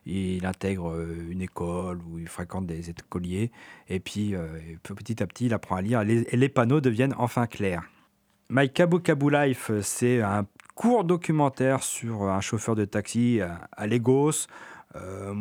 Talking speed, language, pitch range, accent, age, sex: 150 wpm, French, 100-130 Hz, French, 40-59, male